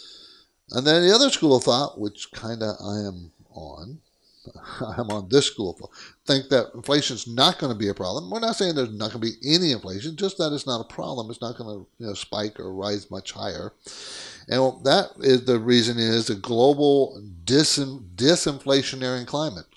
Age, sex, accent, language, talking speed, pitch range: 60-79, male, American, English, 195 wpm, 115-145 Hz